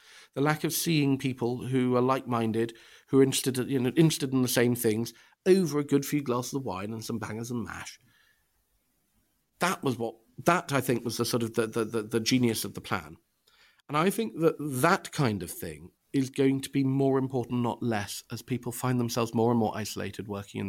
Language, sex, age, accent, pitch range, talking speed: English, male, 40-59, British, 105-135 Hz, 210 wpm